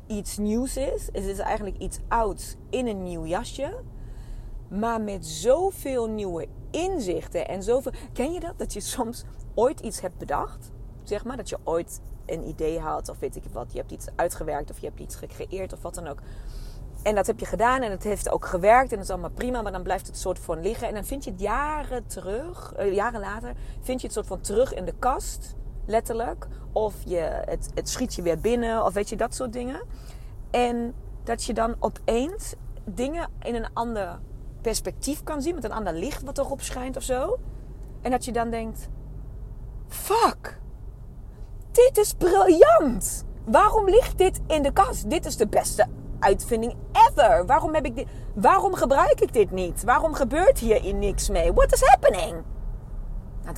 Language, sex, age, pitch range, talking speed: Dutch, female, 30-49, 195-295 Hz, 190 wpm